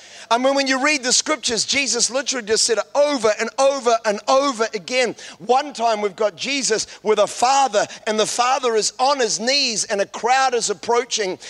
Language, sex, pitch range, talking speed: English, male, 220-280 Hz, 200 wpm